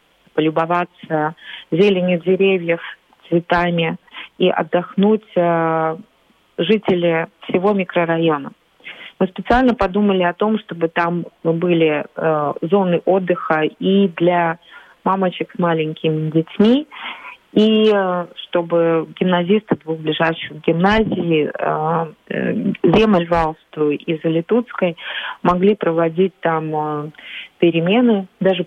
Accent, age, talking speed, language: native, 30-49, 90 wpm, Russian